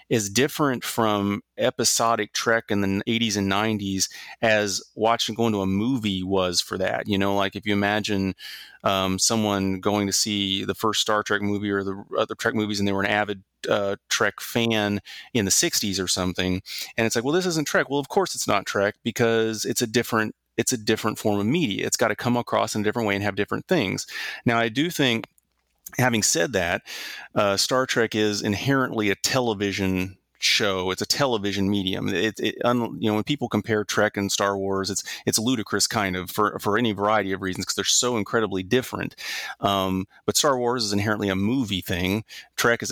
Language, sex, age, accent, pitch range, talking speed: English, male, 30-49, American, 100-115 Hz, 205 wpm